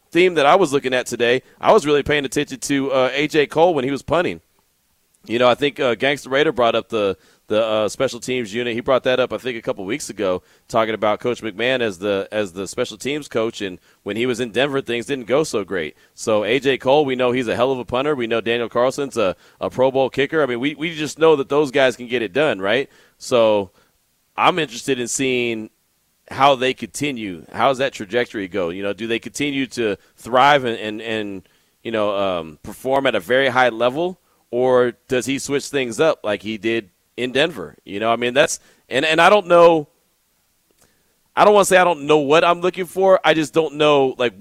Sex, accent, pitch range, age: male, American, 115-140 Hz, 30-49